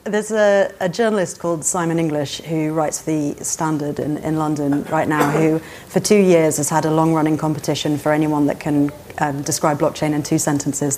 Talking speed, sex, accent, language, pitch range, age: 190 wpm, female, British, English, 145-160 Hz, 30-49